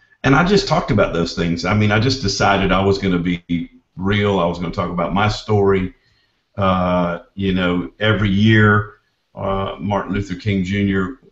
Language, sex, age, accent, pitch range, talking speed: English, male, 50-69, American, 90-105 Hz, 190 wpm